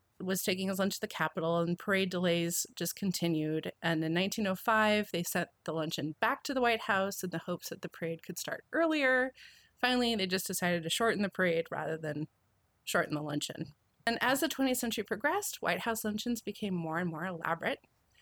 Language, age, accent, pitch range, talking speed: English, 30-49, American, 165-215 Hz, 200 wpm